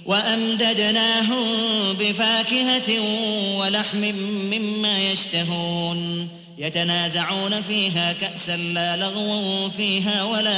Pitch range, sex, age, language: 175-210 Hz, male, 20-39, Arabic